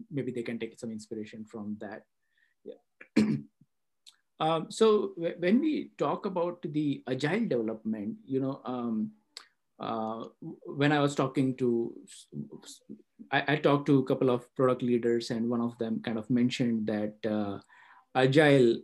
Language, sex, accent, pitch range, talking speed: English, male, Indian, 115-145 Hz, 155 wpm